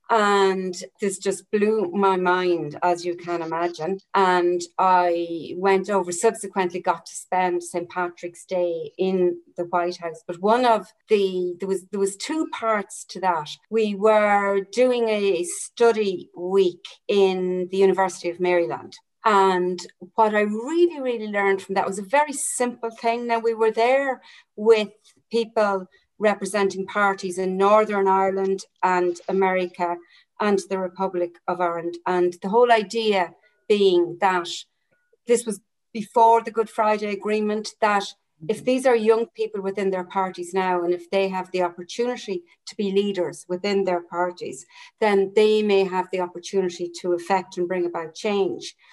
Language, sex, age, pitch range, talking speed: English, female, 40-59, 180-215 Hz, 155 wpm